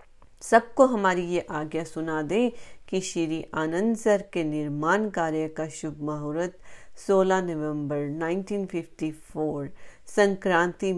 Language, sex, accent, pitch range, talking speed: Hindi, female, native, 150-190 Hz, 110 wpm